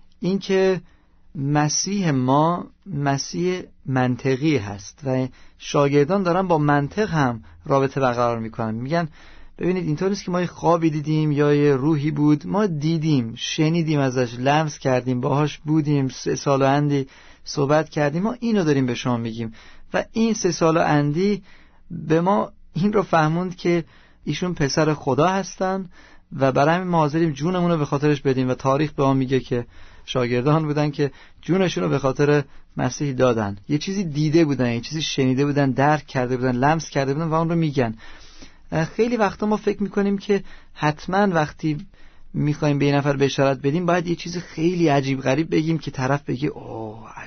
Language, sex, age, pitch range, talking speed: Persian, male, 40-59, 130-170 Hz, 165 wpm